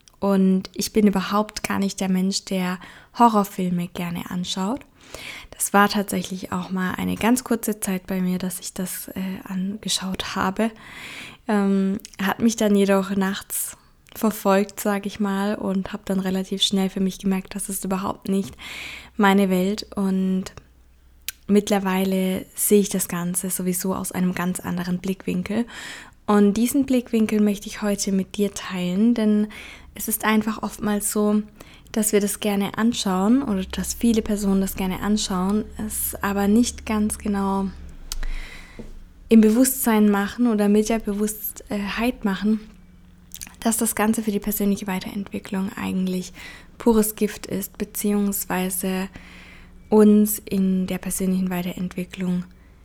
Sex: female